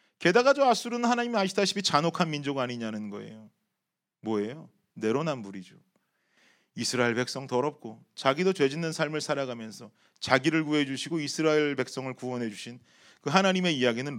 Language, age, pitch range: Korean, 30-49, 120-155 Hz